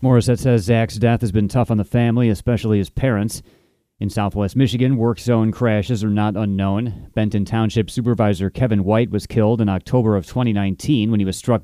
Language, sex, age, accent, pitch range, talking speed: English, male, 30-49, American, 105-120 Hz, 190 wpm